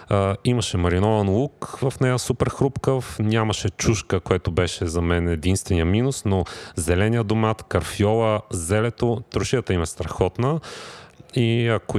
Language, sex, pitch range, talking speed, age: Bulgarian, male, 95-125 Hz, 130 wpm, 40-59